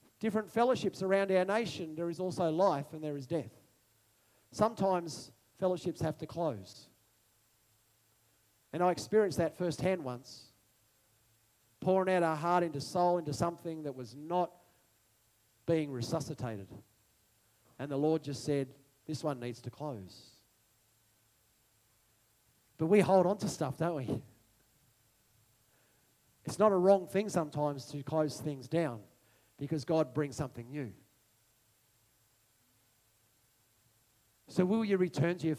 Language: English